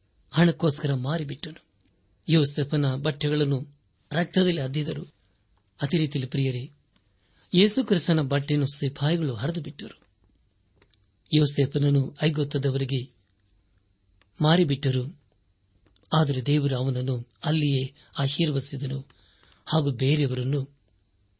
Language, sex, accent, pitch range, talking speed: Kannada, male, native, 100-150 Hz, 45 wpm